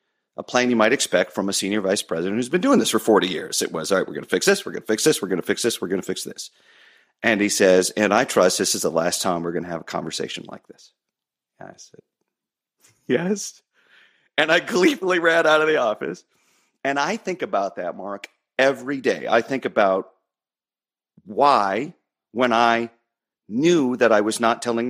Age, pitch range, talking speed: 40-59, 90-125 Hz, 220 wpm